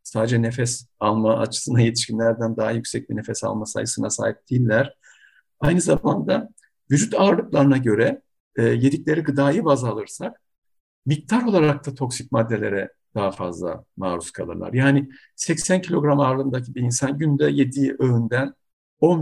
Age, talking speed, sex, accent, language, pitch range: 50-69, 130 wpm, male, native, Turkish, 115-160 Hz